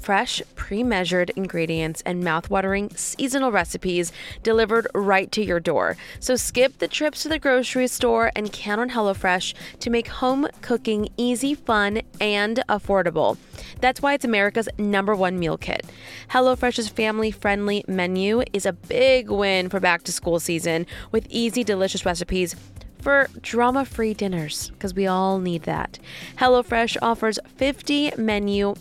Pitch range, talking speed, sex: 185-240 Hz, 140 wpm, female